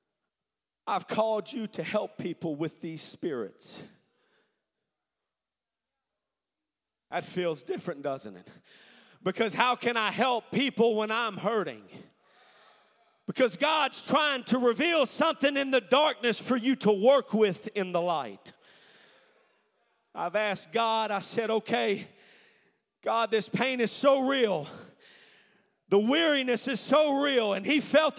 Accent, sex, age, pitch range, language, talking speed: American, male, 40-59, 205-265 Hz, English, 130 wpm